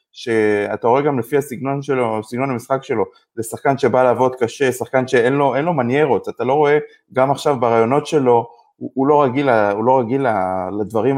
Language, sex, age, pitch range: Hebrew, male, 20-39, 115-140 Hz